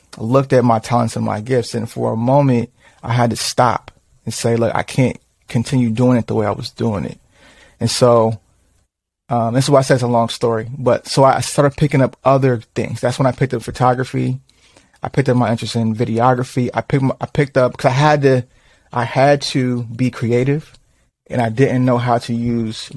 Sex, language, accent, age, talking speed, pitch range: male, English, American, 30-49, 215 wpm, 120-140 Hz